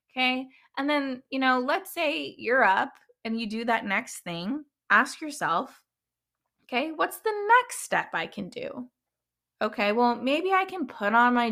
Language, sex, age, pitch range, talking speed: English, female, 20-39, 215-275 Hz, 170 wpm